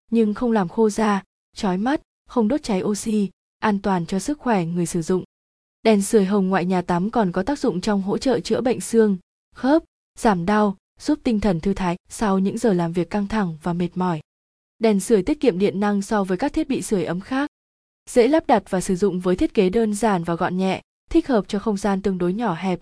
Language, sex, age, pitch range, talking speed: Vietnamese, female, 20-39, 185-230 Hz, 235 wpm